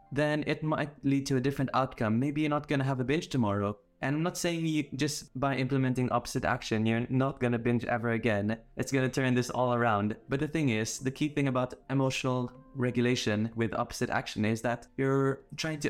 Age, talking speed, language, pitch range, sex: 20-39, 210 wpm, Italian, 120-145 Hz, male